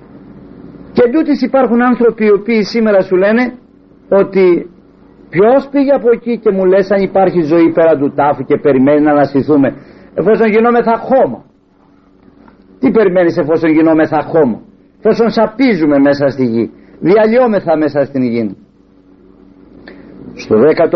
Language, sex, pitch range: Greek, male, 135-200 Hz